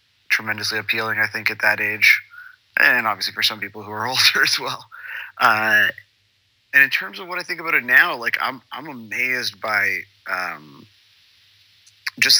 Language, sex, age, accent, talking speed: English, male, 30-49, American, 170 wpm